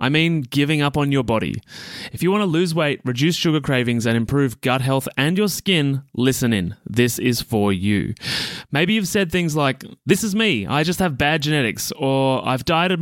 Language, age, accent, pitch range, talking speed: English, 20-39, Australian, 120-165 Hz, 210 wpm